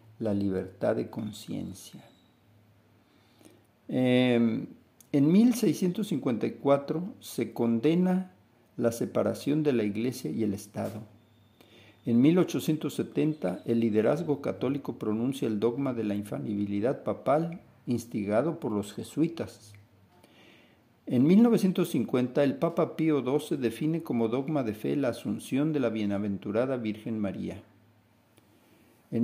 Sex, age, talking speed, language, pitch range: male, 50-69, 110 wpm, Spanish, 110-150 Hz